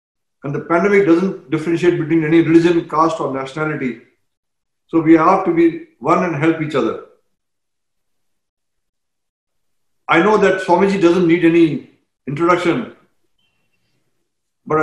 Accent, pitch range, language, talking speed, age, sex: Indian, 165-195 Hz, English, 120 wpm, 50-69, male